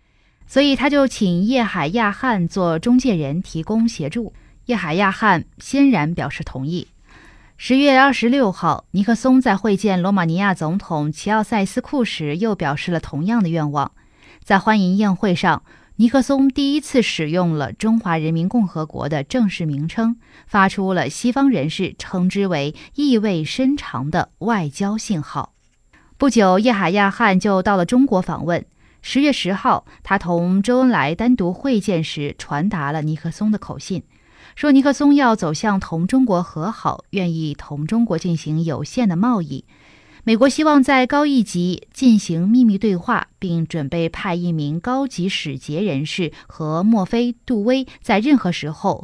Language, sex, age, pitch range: Chinese, female, 20-39, 165-235 Hz